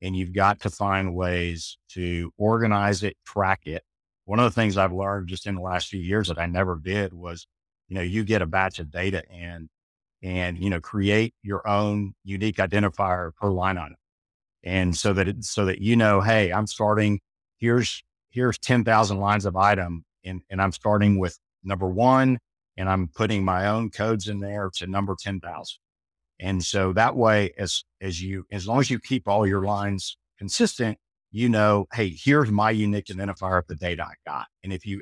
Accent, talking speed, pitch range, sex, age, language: American, 195 wpm, 90-105 Hz, male, 50-69, English